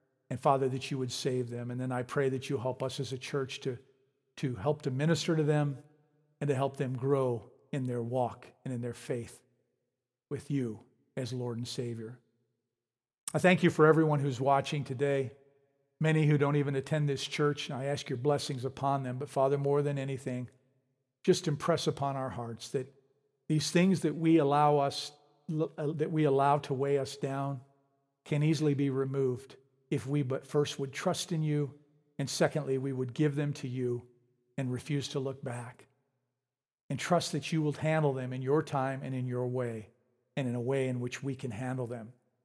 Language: English